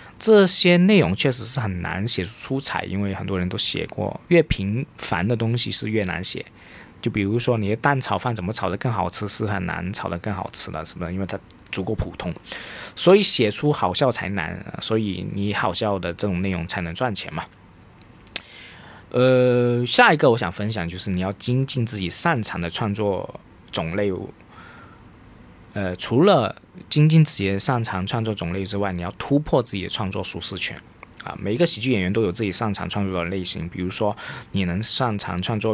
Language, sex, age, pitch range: Chinese, male, 20-39, 95-125 Hz